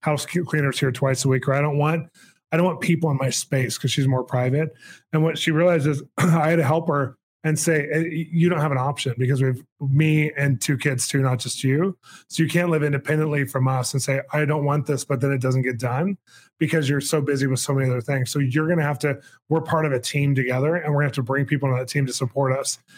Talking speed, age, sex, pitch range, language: 270 wpm, 20-39, male, 135-155 Hz, English